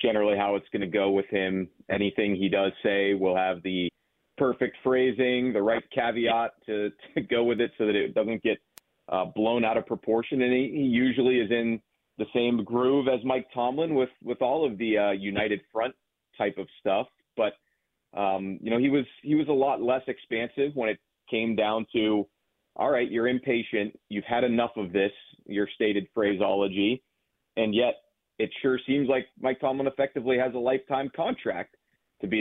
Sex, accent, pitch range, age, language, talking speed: male, American, 100-125 Hz, 30-49, English, 190 wpm